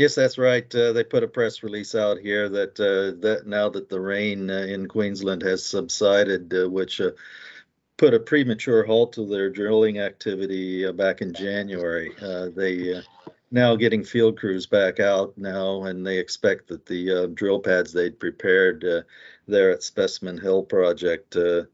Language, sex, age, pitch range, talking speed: English, male, 50-69, 90-105 Hz, 180 wpm